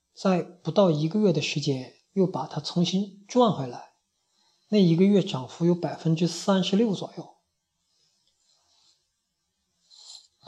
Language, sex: Chinese, male